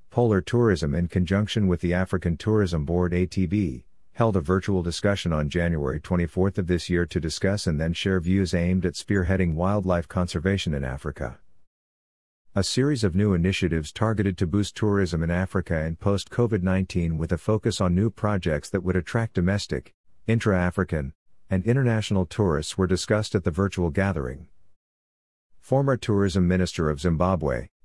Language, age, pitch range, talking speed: English, 50-69, 85-100 Hz, 155 wpm